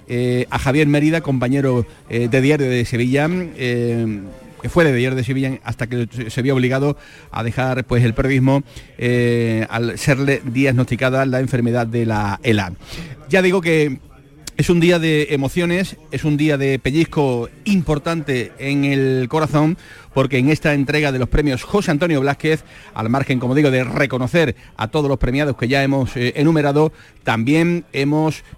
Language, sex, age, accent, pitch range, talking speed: Spanish, male, 40-59, Spanish, 125-150 Hz, 165 wpm